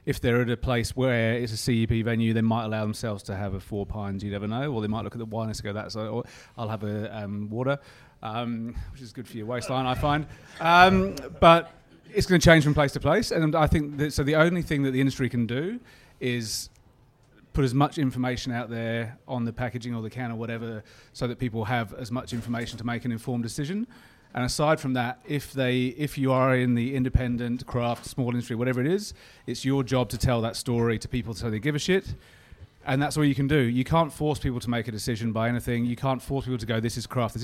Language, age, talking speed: English, 30-49, 245 wpm